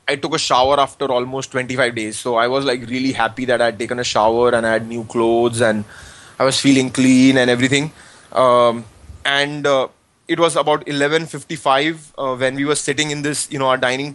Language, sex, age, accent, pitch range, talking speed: English, male, 20-39, Indian, 115-135 Hz, 210 wpm